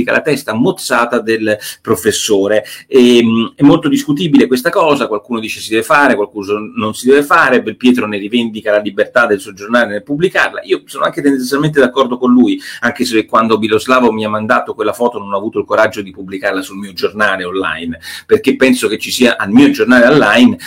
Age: 40-59